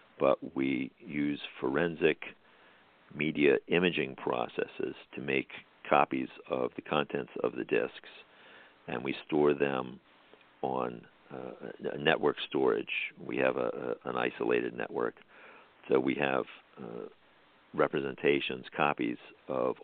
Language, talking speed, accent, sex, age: English, 110 wpm, American, male, 50-69